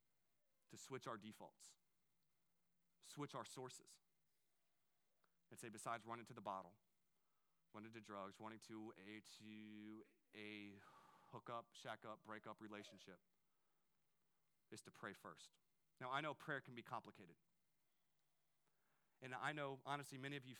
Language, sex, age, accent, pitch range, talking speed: English, male, 30-49, American, 110-145 Hz, 135 wpm